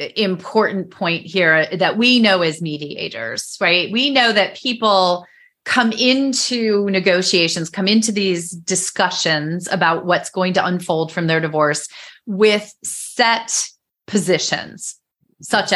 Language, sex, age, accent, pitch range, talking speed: English, female, 30-49, American, 180-235 Hz, 120 wpm